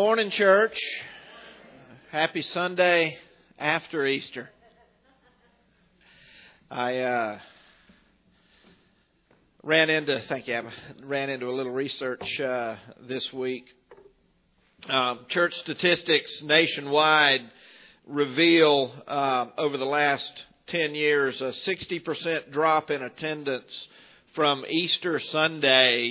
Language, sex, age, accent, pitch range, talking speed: English, male, 50-69, American, 130-175 Hz, 95 wpm